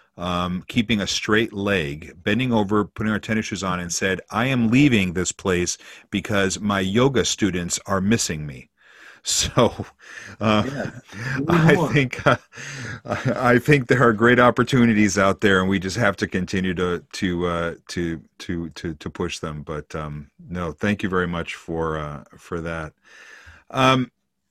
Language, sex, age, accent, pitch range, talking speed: English, male, 40-59, American, 90-120 Hz, 160 wpm